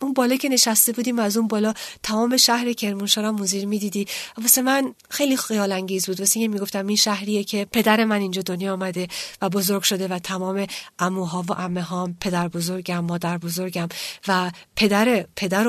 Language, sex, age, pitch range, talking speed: Persian, female, 40-59, 185-235 Hz, 185 wpm